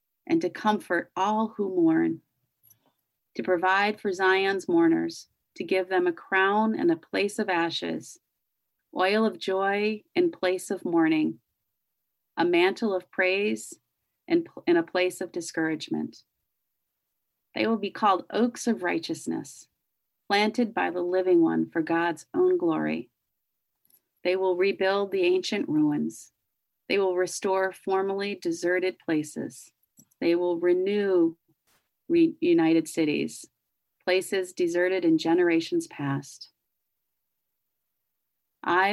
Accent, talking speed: American, 115 wpm